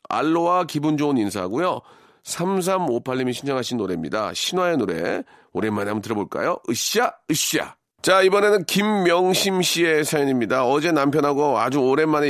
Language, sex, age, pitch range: Korean, male, 40-59, 115-175 Hz